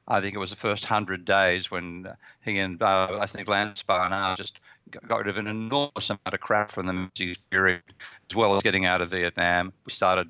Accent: Australian